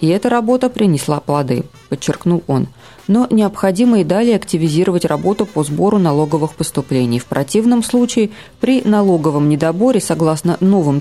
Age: 20-39